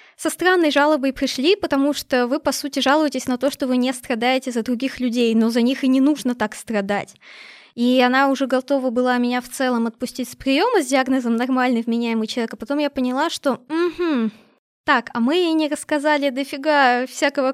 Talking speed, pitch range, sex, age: 195 wpm, 240-295 Hz, female, 20-39